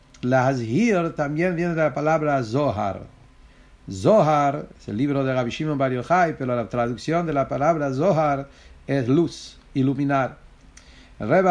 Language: English